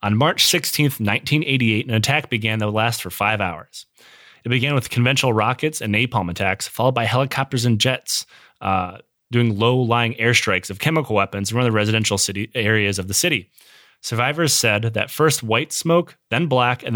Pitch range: 105-125 Hz